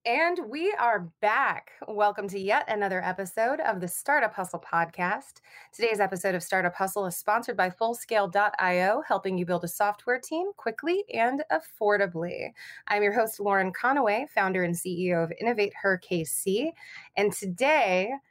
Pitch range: 180-245 Hz